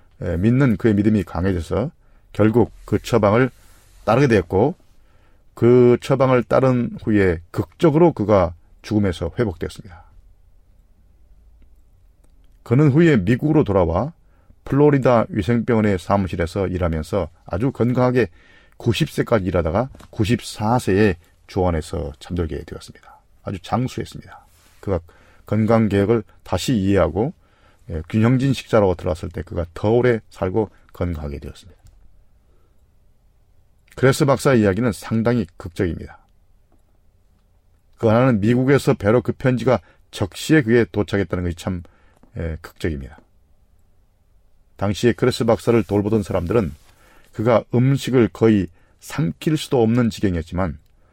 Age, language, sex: 40-59, Korean, male